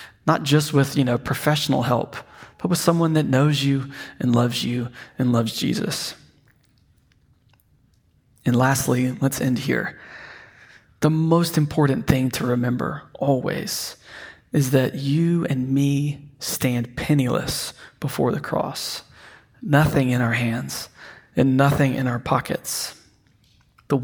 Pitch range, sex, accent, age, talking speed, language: 125-145 Hz, male, American, 20-39, 125 wpm, English